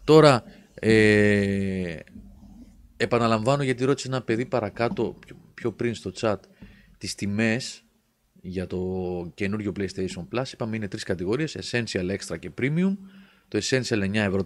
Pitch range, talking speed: 100-155 Hz, 130 wpm